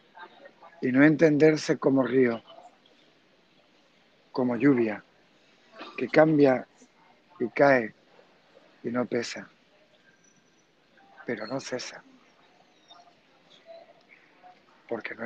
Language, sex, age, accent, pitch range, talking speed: Spanish, male, 60-79, Spanish, 125-155 Hz, 75 wpm